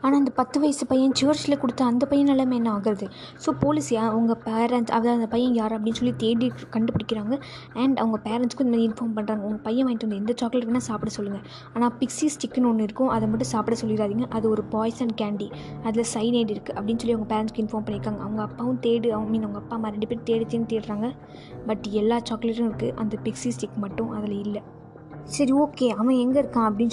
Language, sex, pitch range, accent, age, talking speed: Tamil, female, 215-240 Hz, native, 20-39, 205 wpm